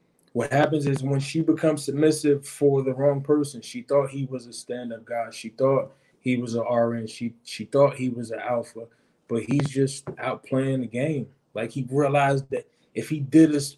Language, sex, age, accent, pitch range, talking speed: English, male, 20-39, American, 130-155 Hz, 200 wpm